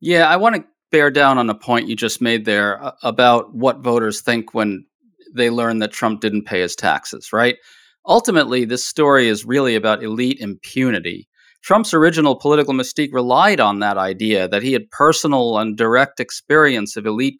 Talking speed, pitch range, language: 180 wpm, 120-170 Hz, English